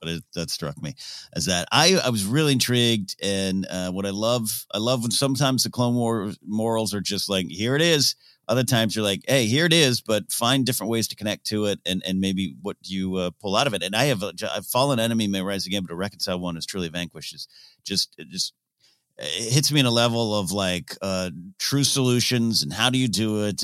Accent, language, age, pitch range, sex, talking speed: American, English, 40-59, 90-115 Hz, male, 235 wpm